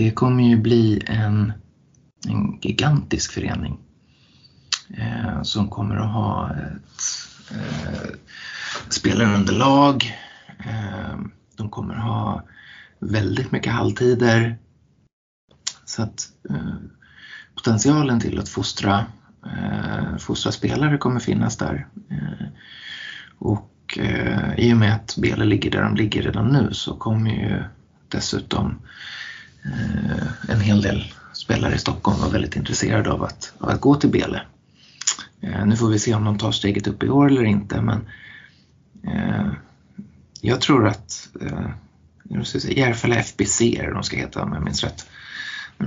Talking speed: 135 wpm